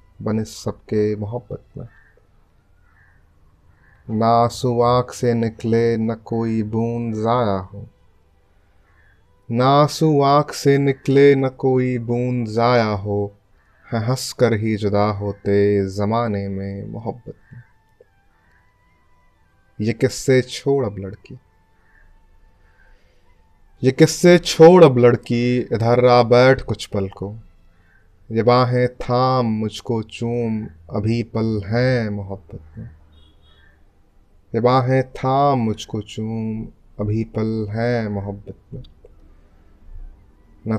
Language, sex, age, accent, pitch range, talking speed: Hindi, male, 30-49, native, 95-120 Hz, 95 wpm